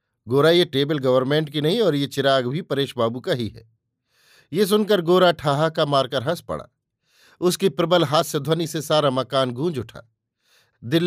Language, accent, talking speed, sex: Hindi, native, 185 wpm, male